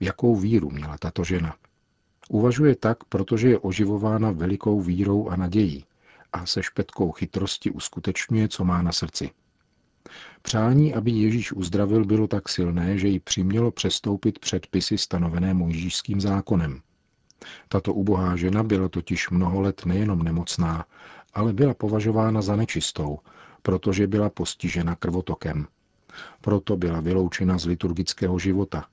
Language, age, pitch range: Czech, 40-59, 85-105 Hz